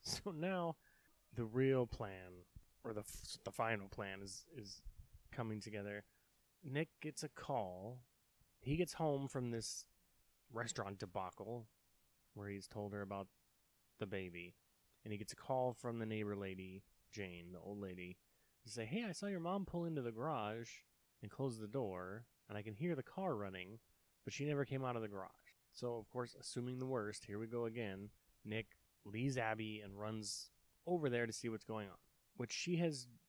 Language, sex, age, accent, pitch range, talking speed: English, male, 20-39, American, 105-135 Hz, 180 wpm